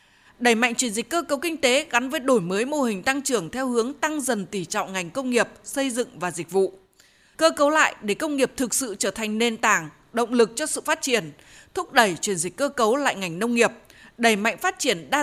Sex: female